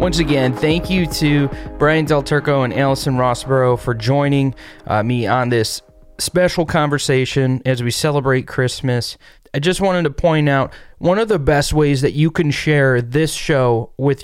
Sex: male